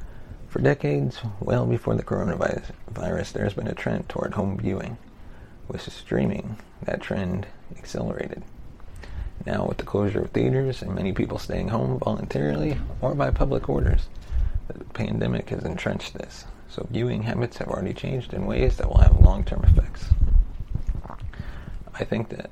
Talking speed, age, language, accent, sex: 145 wpm, 30-49, English, American, male